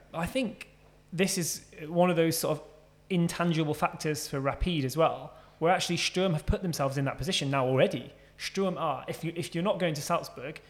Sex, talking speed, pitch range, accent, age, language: male, 215 wpm, 145-175 Hz, British, 20-39, English